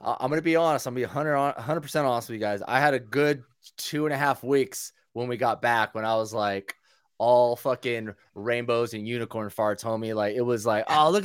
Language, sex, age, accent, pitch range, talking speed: English, male, 20-39, American, 115-180 Hz, 230 wpm